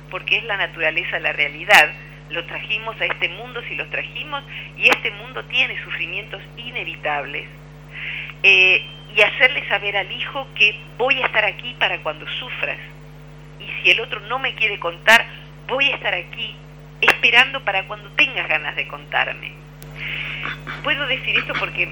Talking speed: 155 wpm